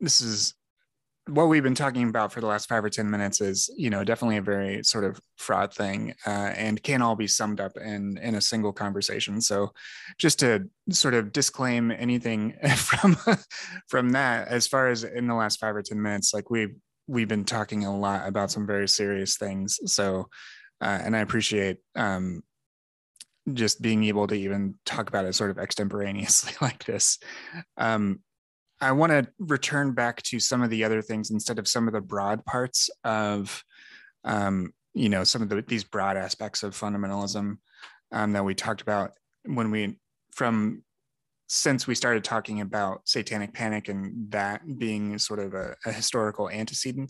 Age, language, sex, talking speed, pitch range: 20-39, English, male, 180 wpm, 100-120 Hz